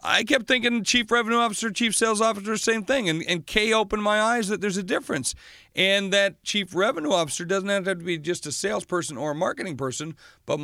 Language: English